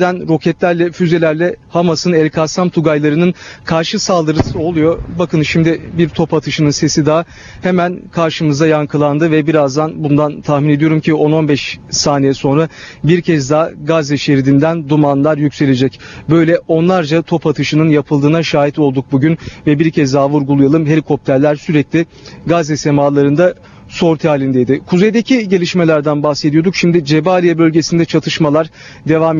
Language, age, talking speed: Turkish, 40-59, 125 wpm